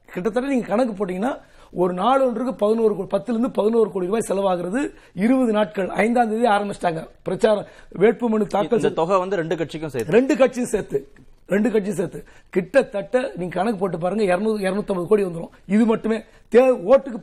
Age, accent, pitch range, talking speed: 30-49, native, 190-250 Hz, 45 wpm